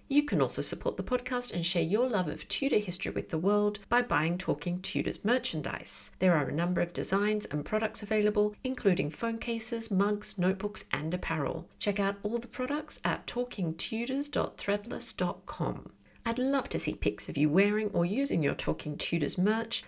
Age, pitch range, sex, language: 40-59, 170-215 Hz, female, English